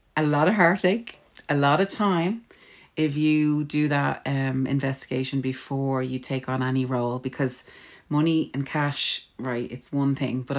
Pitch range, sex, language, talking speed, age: 130-155 Hz, female, English, 165 wpm, 30-49